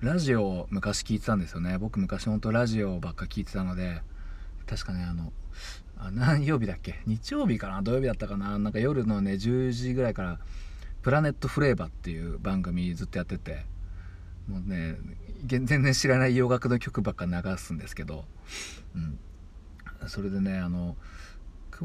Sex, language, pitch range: male, Japanese, 85-115 Hz